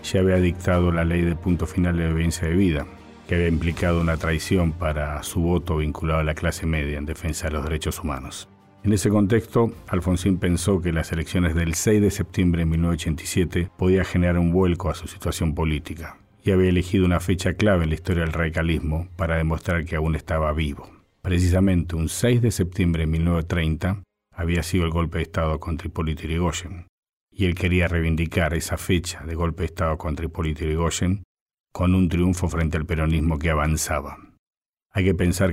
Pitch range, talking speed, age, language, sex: 80-90 Hz, 185 wpm, 50-69, Spanish, male